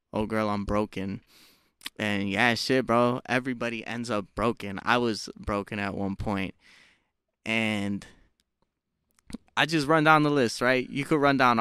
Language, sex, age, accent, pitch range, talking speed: English, male, 20-39, American, 110-130 Hz, 155 wpm